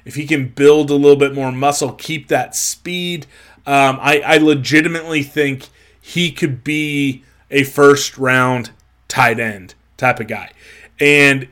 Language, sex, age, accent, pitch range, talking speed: English, male, 20-39, American, 130-150 Hz, 145 wpm